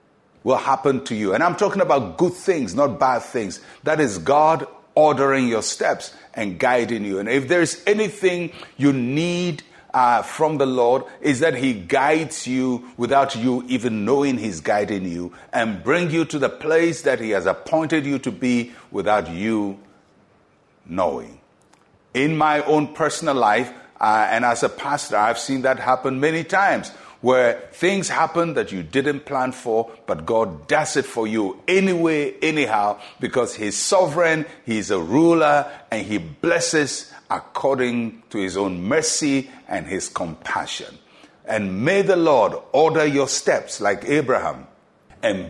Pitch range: 120-165 Hz